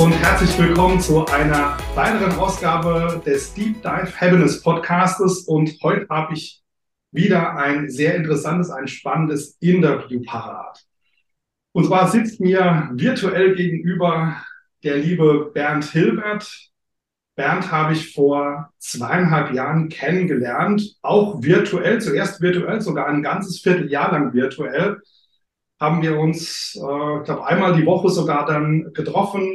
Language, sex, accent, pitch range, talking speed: German, male, German, 150-185 Hz, 125 wpm